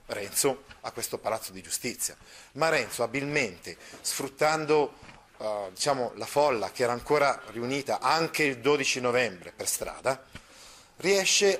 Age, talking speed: 40-59, 120 wpm